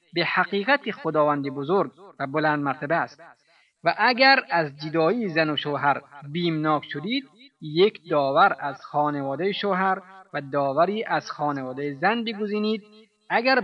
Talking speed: 130 wpm